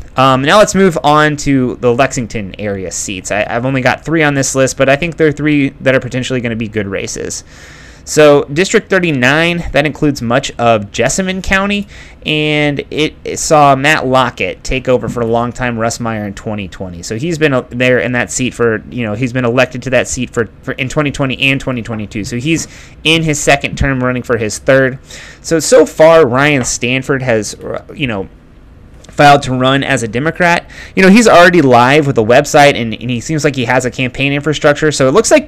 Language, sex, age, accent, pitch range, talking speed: English, male, 30-49, American, 125-150 Hz, 210 wpm